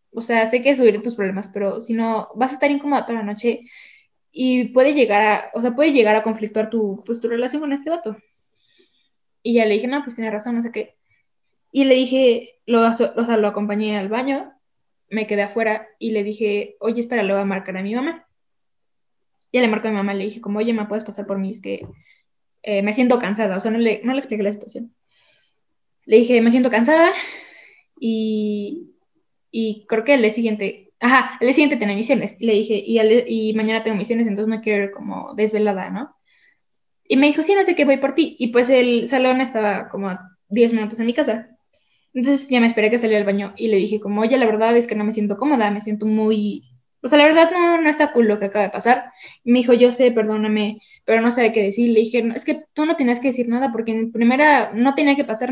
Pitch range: 215-260 Hz